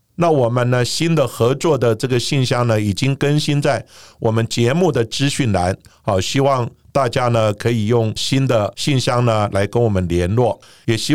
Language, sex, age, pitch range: Chinese, male, 50-69, 110-135 Hz